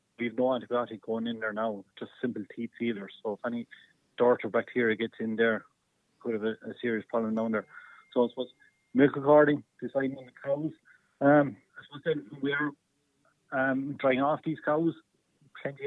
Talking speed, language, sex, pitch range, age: 180 wpm, English, male, 120-140 Hz, 70-89